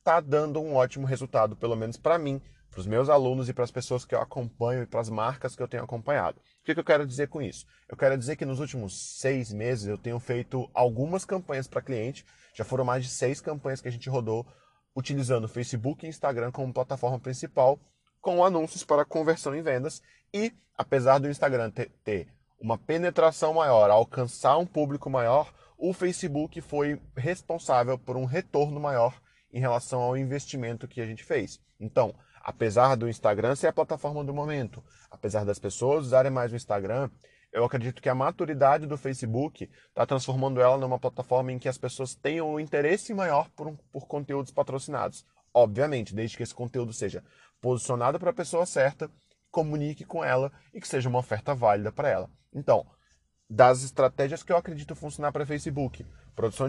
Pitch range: 125-150 Hz